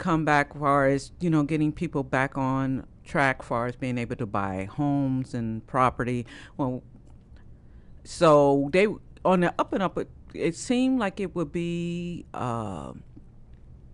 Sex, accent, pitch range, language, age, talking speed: female, American, 120-150 Hz, English, 50-69, 155 wpm